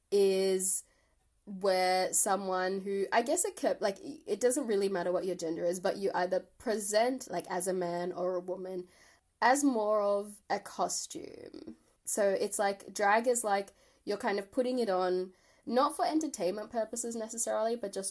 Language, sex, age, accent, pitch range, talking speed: English, female, 10-29, Australian, 175-225 Hz, 170 wpm